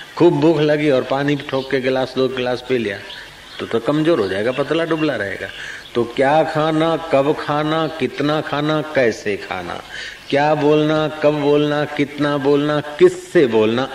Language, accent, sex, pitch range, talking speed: Hindi, native, male, 125-160 Hz, 160 wpm